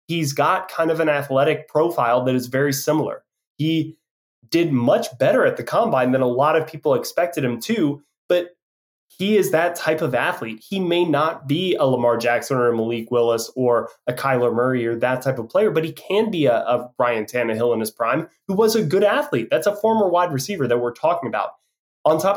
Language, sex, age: English, male, 20-39